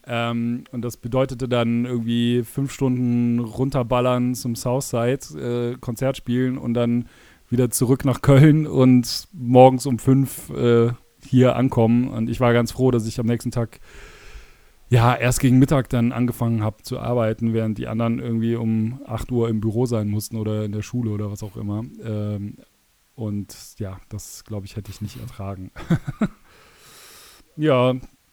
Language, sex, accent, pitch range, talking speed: German, male, German, 110-125 Hz, 160 wpm